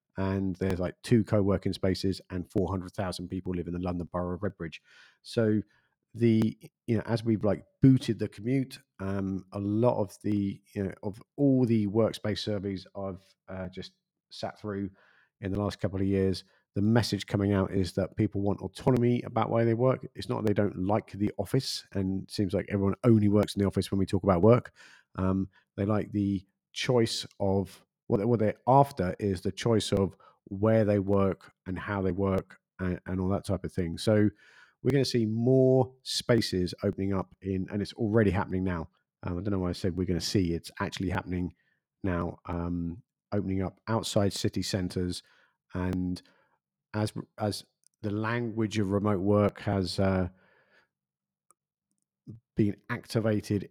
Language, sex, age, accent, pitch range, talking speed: English, male, 40-59, British, 95-110 Hz, 180 wpm